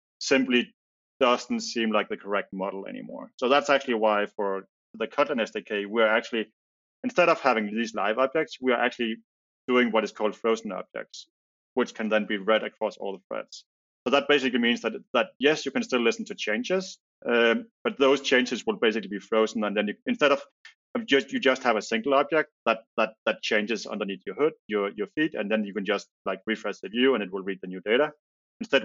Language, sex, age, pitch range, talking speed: English, male, 30-49, 105-135 Hz, 215 wpm